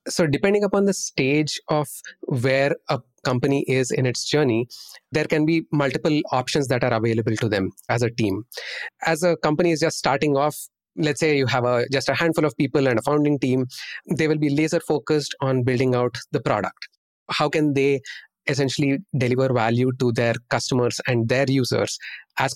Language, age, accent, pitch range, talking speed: English, 30-49, Indian, 130-160 Hz, 185 wpm